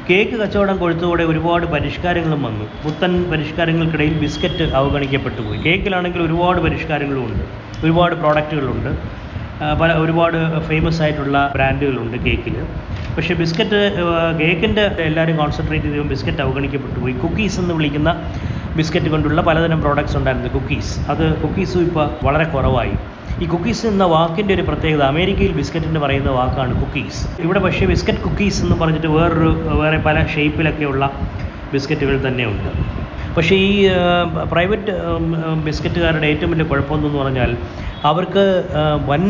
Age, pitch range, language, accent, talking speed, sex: 20-39, 135-165 Hz, Malayalam, native, 115 wpm, male